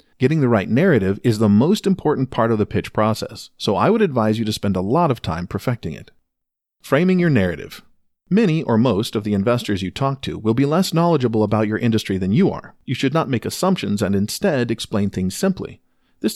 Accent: American